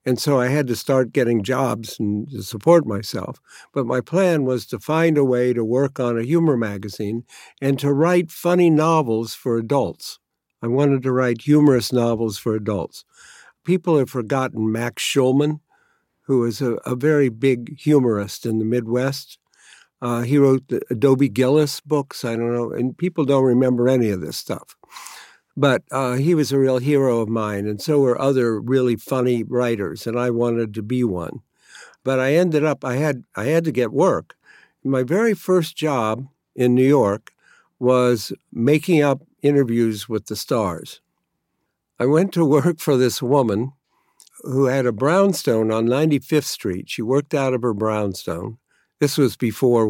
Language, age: English, 60-79